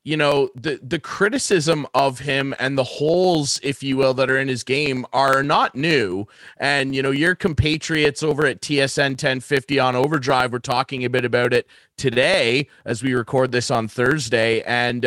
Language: English